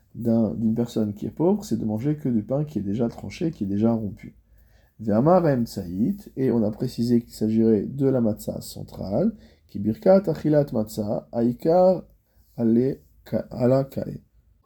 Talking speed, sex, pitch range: 160 wpm, male, 105-130 Hz